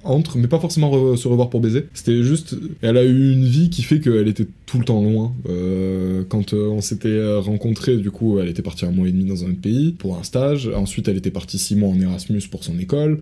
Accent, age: French, 20-39